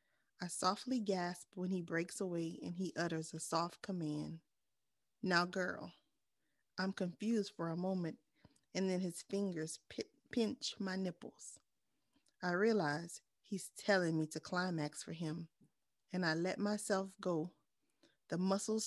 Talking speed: 135 wpm